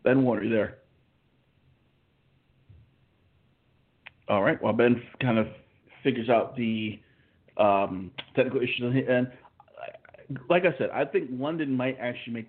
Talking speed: 130 wpm